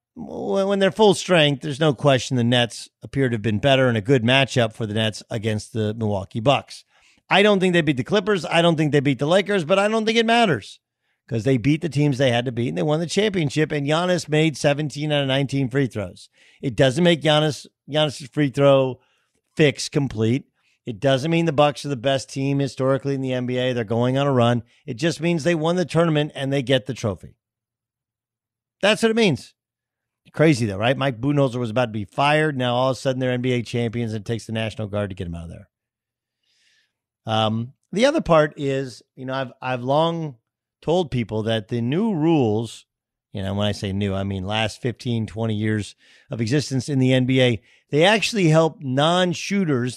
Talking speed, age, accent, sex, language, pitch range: 215 wpm, 50-69, American, male, English, 120-155 Hz